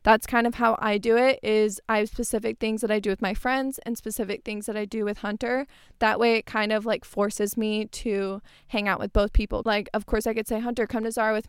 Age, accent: 20-39, American